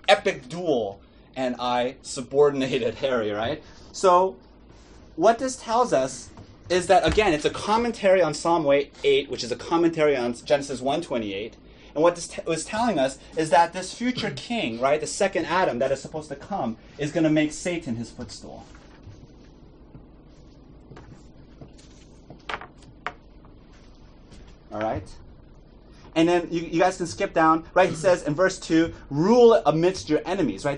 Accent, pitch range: American, 125-180 Hz